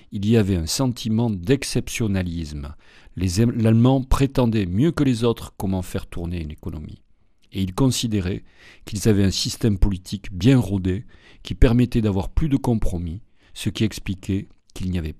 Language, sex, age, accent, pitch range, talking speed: French, male, 40-59, French, 90-115 Hz, 155 wpm